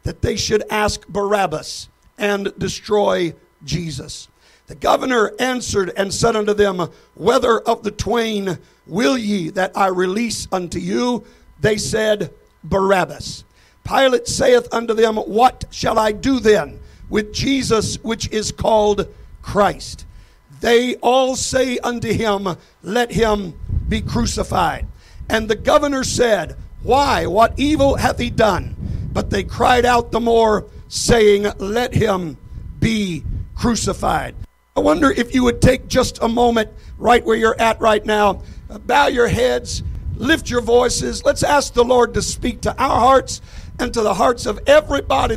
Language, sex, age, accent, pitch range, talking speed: English, male, 60-79, American, 200-250 Hz, 145 wpm